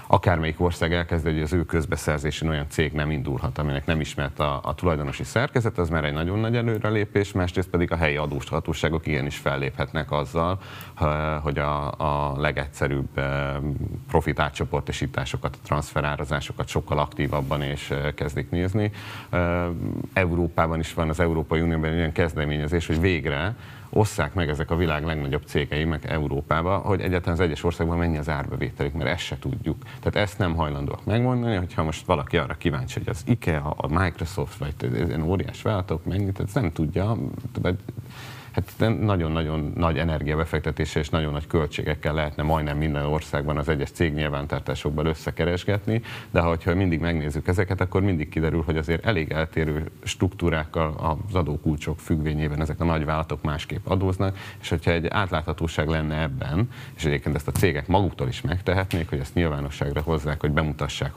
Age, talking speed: 30-49, 155 wpm